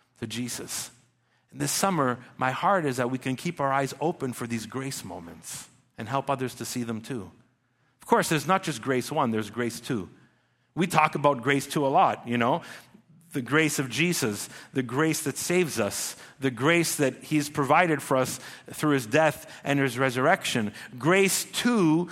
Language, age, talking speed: English, 50-69, 180 wpm